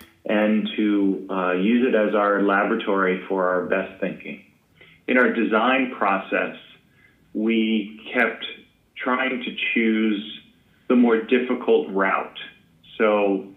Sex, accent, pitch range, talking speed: male, American, 95-110 Hz, 115 wpm